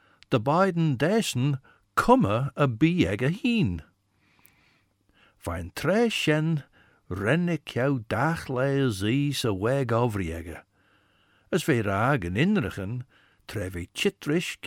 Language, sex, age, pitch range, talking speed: English, male, 60-79, 100-140 Hz, 80 wpm